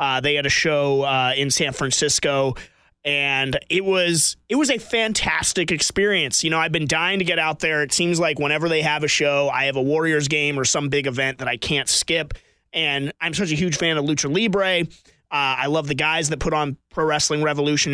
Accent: American